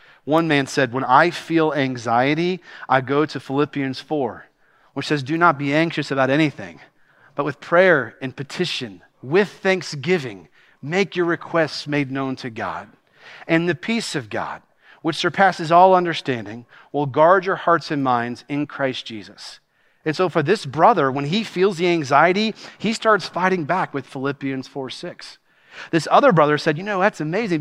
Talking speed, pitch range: 165 wpm, 140-185 Hz